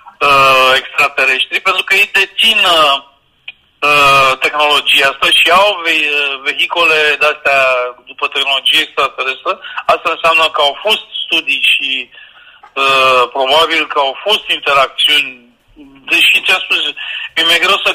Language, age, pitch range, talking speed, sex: Romanian, 40-59, 140-195 Hz, 125 wpm, male